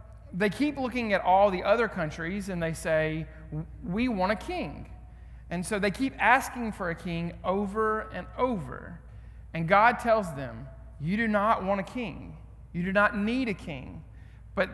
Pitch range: 155-210 Hz